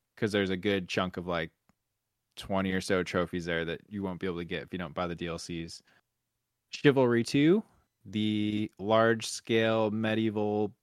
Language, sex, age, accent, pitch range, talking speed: English, male, 20-39, American, 95-115 Hz, 170 wpm